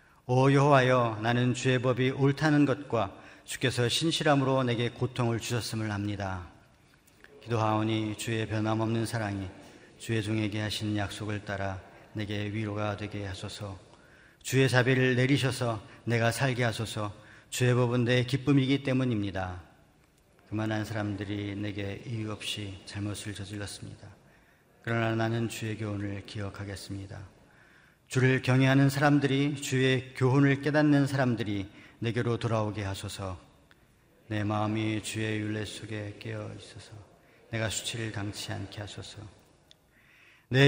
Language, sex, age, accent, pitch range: Korean, male, 40-59, native, 105-125 Hz